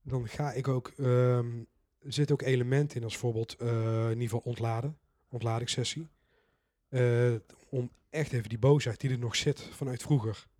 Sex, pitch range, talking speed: male, 115-135 Hz, 170 wpm